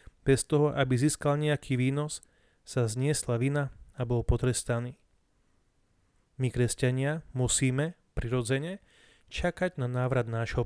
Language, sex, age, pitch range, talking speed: Slovak, male, 30-49, 125-145 Hz, 115 wpm